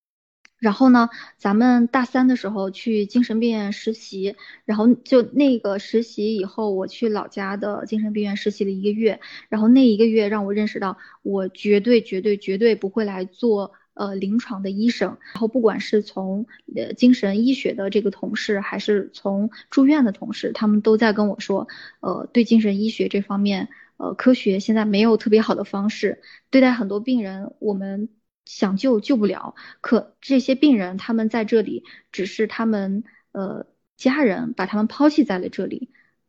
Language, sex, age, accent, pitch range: Chinese, female, 20-39, native, 205-240 Hz